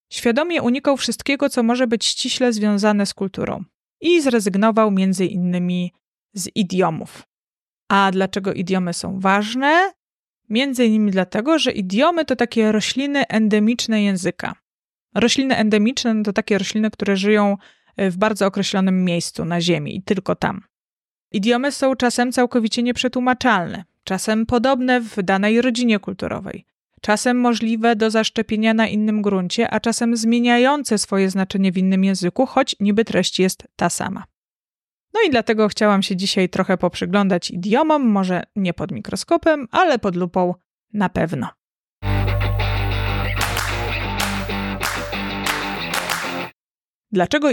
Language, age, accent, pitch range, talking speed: Polish, 20-39, native, 190-235 Hz, 125 wpm